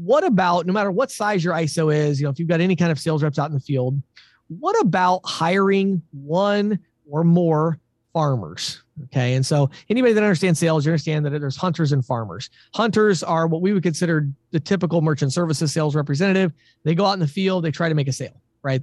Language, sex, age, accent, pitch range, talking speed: English, male, 30-49, American, 150-195 Hz, 220 wpm